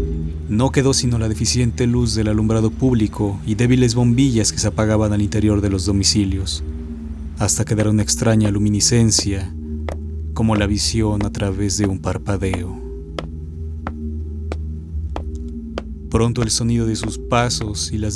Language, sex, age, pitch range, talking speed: Spanish, male, 30-49, 80-110 Hz, 135 wpm